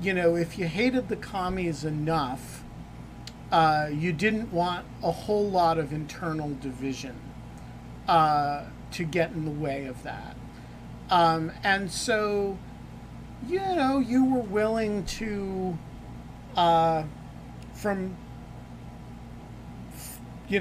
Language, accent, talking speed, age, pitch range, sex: English, American, 110 wpm, 40-59, 150-190 Hz, male